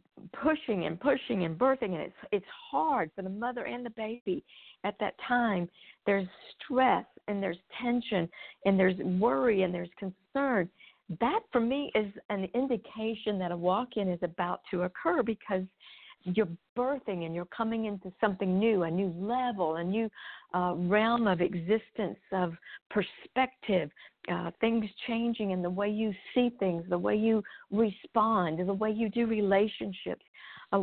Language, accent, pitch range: English, American, 185-235 Hz